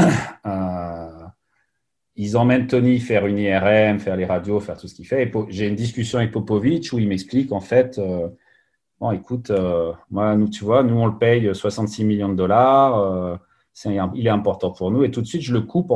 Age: 40-59